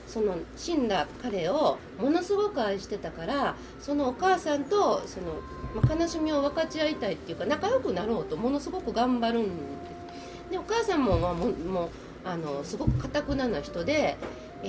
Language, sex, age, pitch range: Japanese, female, 40-59, 230-350 Hz